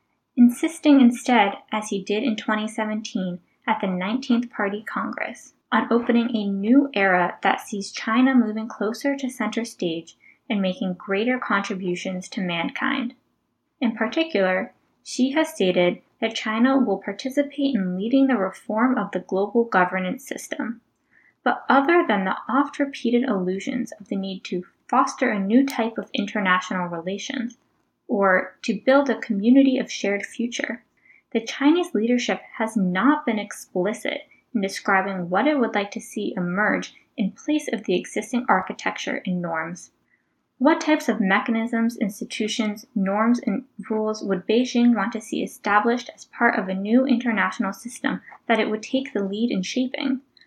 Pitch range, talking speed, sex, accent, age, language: 195-255 Hz, 150 wpm, female, American, 10-29, English